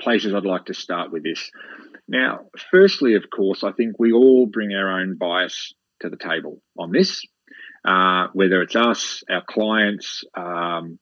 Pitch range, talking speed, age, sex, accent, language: 95-110 Hz, 170 wpm, 30-49, male, Australian, English